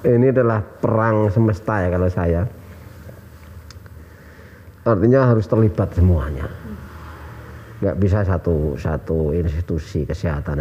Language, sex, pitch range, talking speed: Indonesian, male, 85-105 Hz, 95 wpm